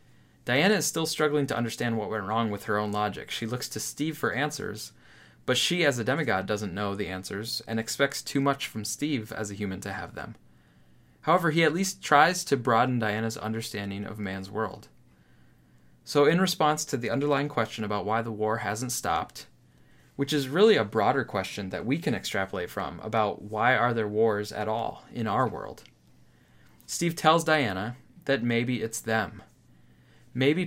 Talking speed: 185 wpm